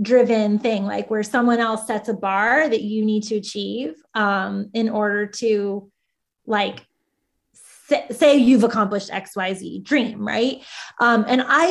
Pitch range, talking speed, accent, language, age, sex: 215-265 Hz, 150 wpm, American, English, 20-39, female